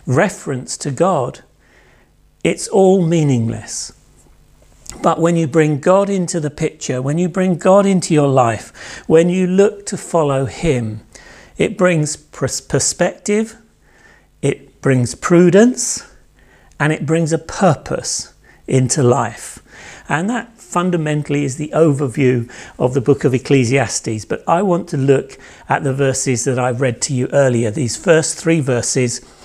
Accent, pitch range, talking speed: British, 130-180 Hz, 140 wpm